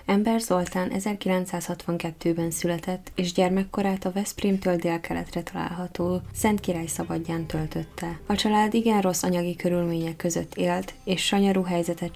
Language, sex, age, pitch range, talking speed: Hungarian, female, 10-29, 170-190 Hz, 130 wpm